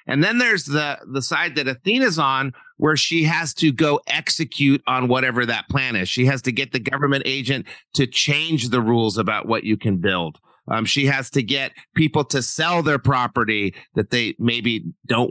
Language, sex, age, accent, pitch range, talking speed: English, male, 40-59, American, 125-155 Hz, 195 wpm